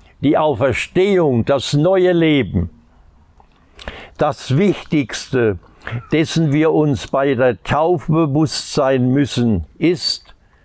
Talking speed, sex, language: 90 wpm, male, German